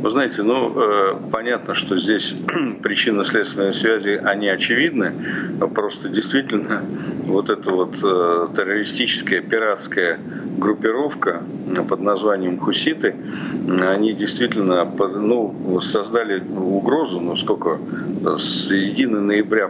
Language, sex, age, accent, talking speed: Ukrainian, male, 50-69, native, 95 wpm